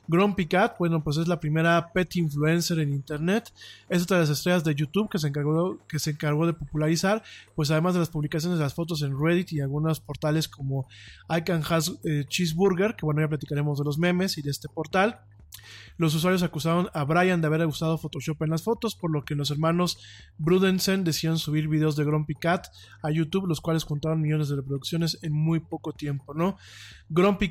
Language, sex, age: Spanish, male, 20-39